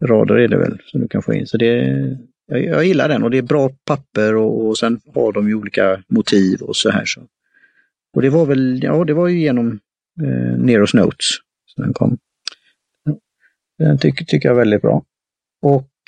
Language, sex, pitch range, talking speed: Swedish, male, 105-135 Hz, 205 wpm